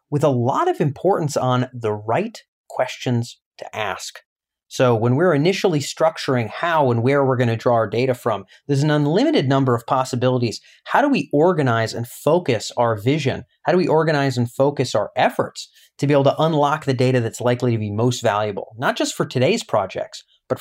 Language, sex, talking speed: English, male, 190 wpm